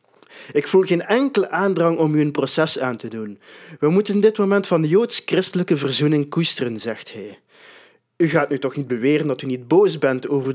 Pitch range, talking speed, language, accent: 130-170 Hz, 200 wpm, Dutch, Dutch